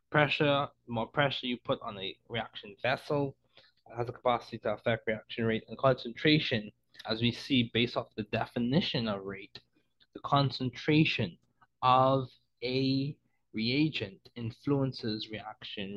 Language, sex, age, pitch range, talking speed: English, male, 20-39, 105-130 Hz, 135 wpm